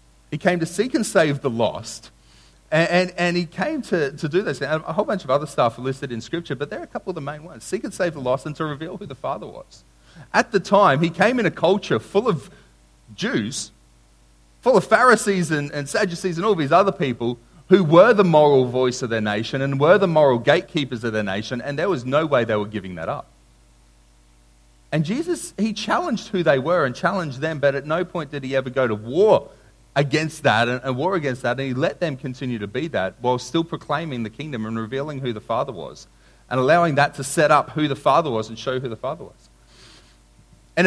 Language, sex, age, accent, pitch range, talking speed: English, male, 30-49, Australian, 105-175 Hz, 235 wpm